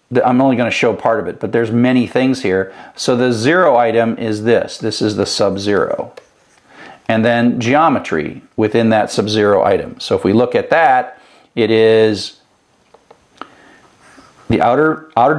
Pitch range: 105-125 Hz